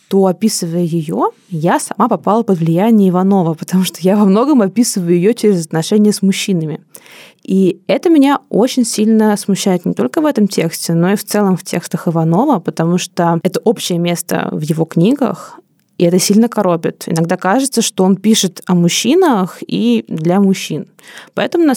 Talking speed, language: 170 wpm, Russian